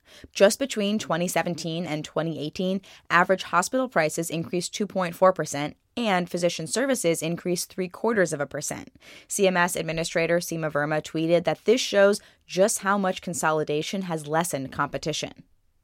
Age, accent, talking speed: 20-39, American, 130 wpm